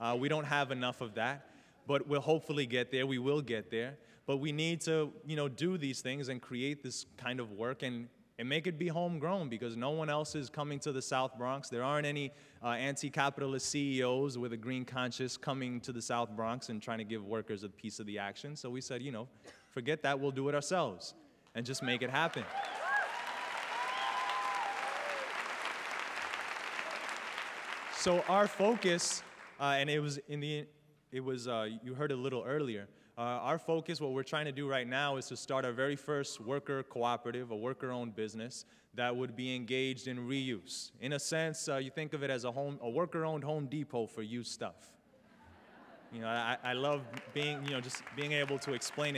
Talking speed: 200 wpm